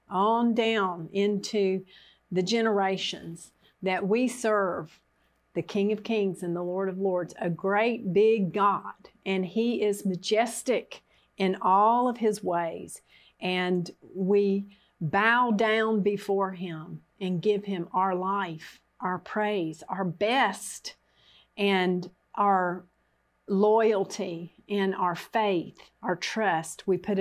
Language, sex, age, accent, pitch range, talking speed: English, female, 50-69, American, 185-220 Hz, 120 wpm